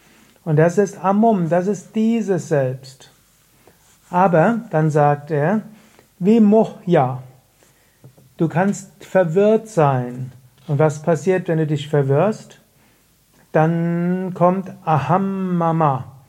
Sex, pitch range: male, 145-190 Hz